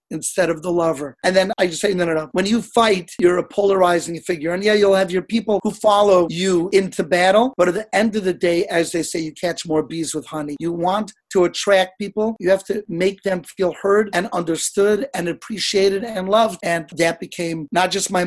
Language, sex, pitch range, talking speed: English, male, 170-200 Hz, 230 wpm